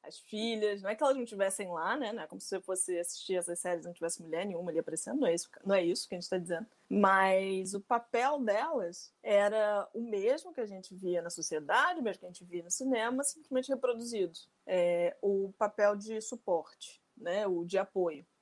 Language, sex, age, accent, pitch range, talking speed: Portuguese, female, 20-39, Brazilian, 180-240 Hz, 220 wpm